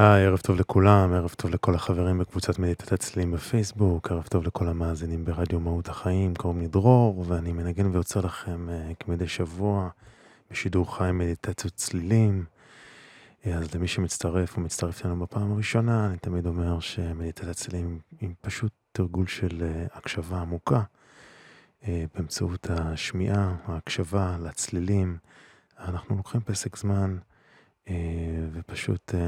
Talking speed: 130 wpm